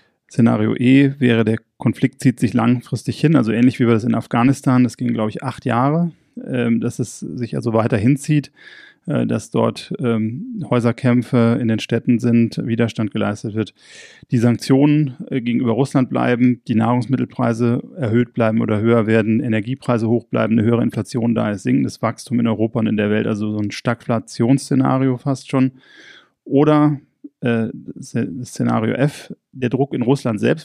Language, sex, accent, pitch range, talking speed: German, male, German, 115-135 Hz, 155 wpm